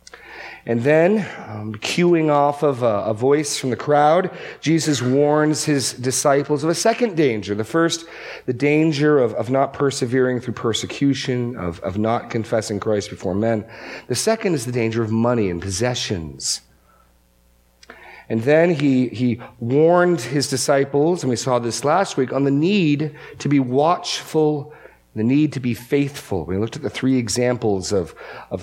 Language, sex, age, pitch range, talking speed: English, male, 40-59, 110-145 Hz, 165 wpm